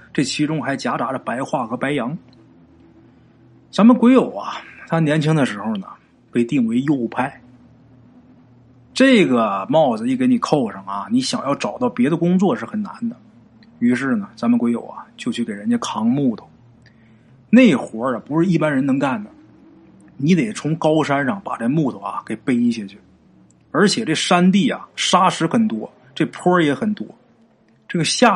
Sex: male